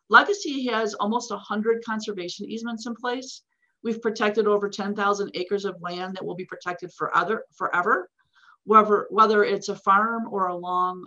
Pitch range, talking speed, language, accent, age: 195-230 Hz, 145 wpm, English, American, 40-59